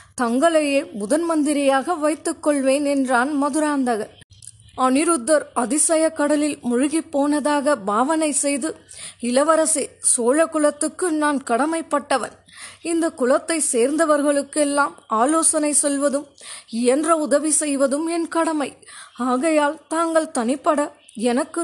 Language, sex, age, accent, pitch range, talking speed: Tamil, female, 20-39, native, 275-320 Hz, 85 wpm